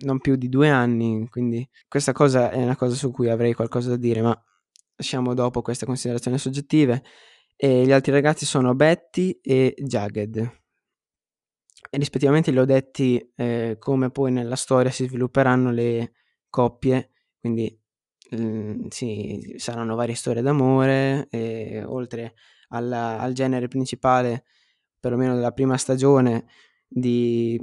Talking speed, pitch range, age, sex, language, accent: 135 wpm, 120-135 Hz, 20-39, male, Italian, native